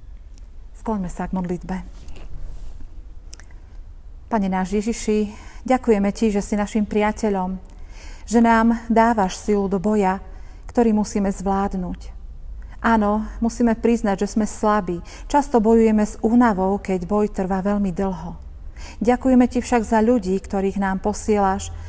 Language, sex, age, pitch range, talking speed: Slovak, female, 40-59, 180-220 Hz, 120 wpm